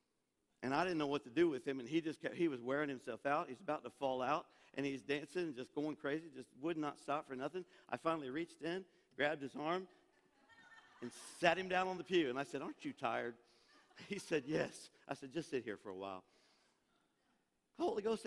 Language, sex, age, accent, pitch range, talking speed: English, male, 50-69, American, 150-210 Hz, 220 wpm